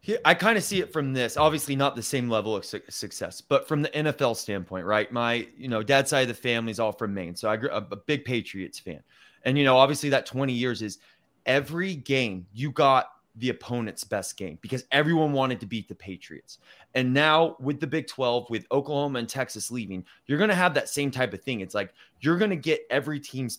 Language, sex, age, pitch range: English, male, 20-39, 110-145 Hz